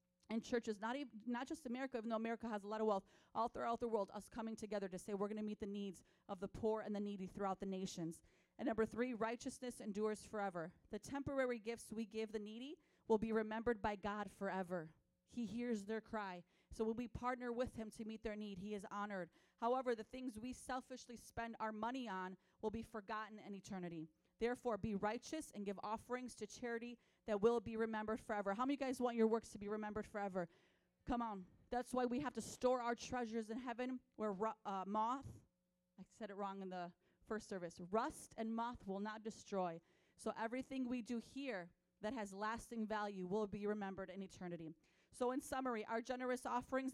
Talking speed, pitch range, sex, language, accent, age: 210 wpm, 205-245 Hz, female, English, American, 30-49